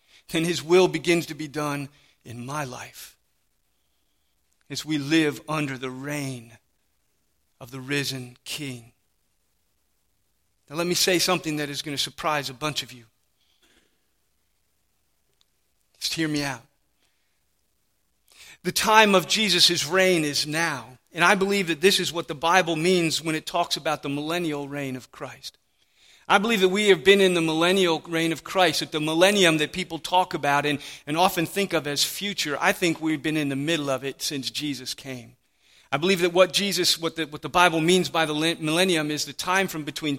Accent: American